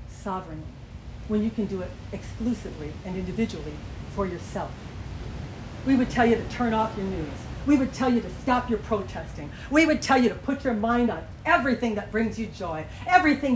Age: 40-59